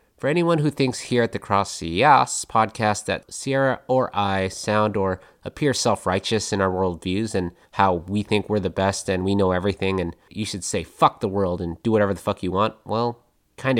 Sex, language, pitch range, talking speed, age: male, English, 95-130 Hz, 210 wpm, 30-49